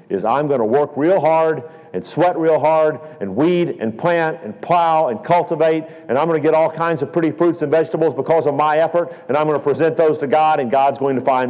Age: 50-69